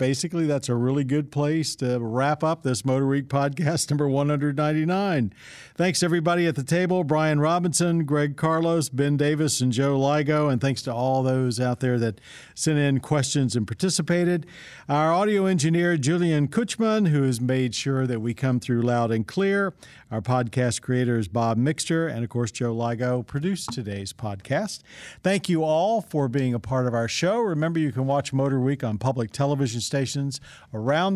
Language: English